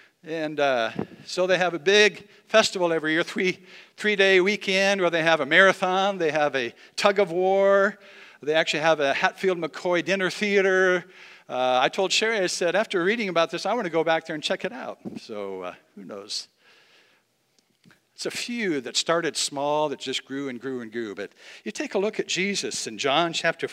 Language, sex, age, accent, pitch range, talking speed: English, male, 60-79, American, 150-195 Hz, 190 wpm